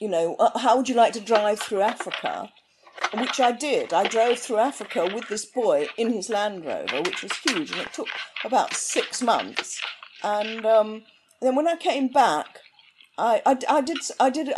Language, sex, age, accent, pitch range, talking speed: English, female, 50-69, British, 200-275 Hz, 195 wpm